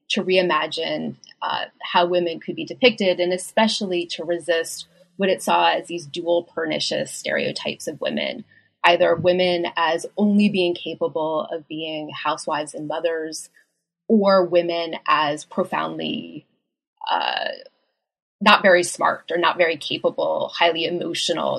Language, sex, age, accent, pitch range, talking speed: English, female, 20-39, American, 165-210 Hz, 130 wpm